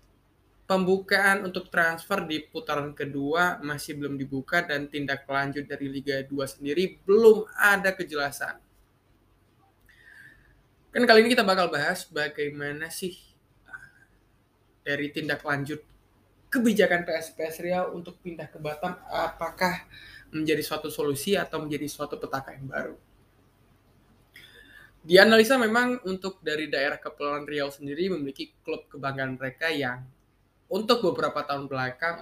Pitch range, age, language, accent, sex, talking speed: 135-175 Hz, 20-39, Indonesian, native, male, 120 wpm